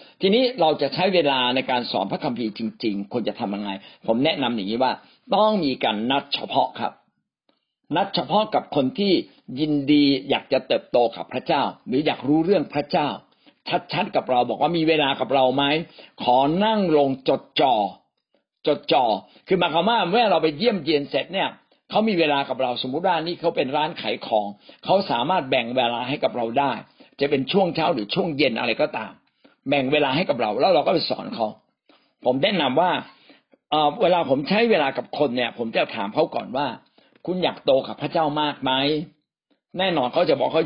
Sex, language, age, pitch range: male, Thai, 60-79, 130-180 Hz